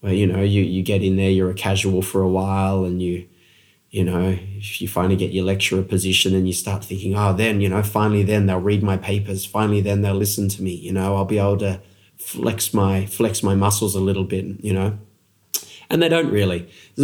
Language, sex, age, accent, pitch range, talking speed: English, male, 20-39, Australian, 95-115 Hz, 230 wpm